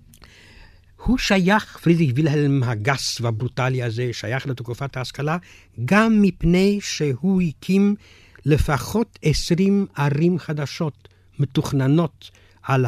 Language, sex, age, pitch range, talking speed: Hebrew, male, 60-79, 105-160 Hz, 95 wpm